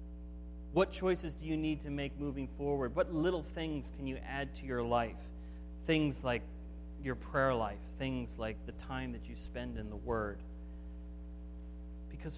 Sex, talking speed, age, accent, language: male, 165 wpm, 30-49, American, English